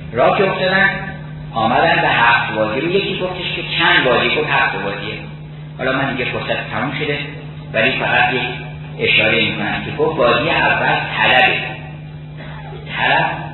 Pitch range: 140-165 Hz